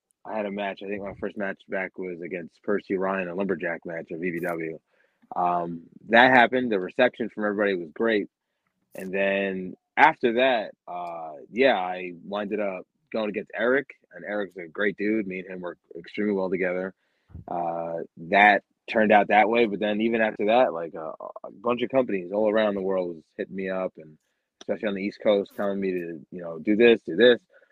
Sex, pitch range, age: male, 90-105 Hz, 20-39